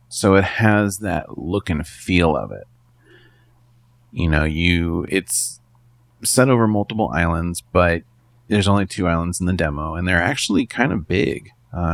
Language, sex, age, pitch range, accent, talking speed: English, male, 30-49, 85-120 Hz, American, 160 wpm